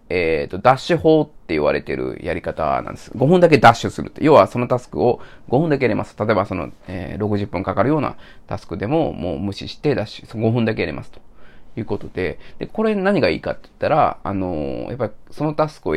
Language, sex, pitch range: Japanese, male, 100-155 Hz